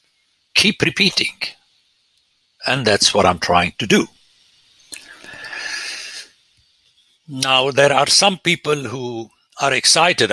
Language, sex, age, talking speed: English, male, 60-79, 100 wpm